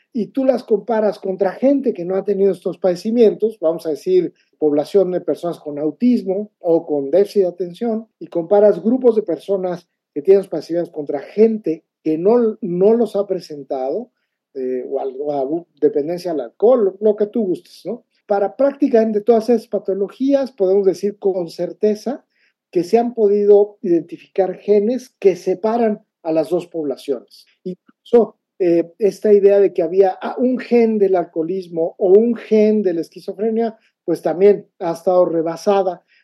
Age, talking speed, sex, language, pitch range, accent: 50-69, 165 wpm, male, Spanish, 170-215 Hz, Mexican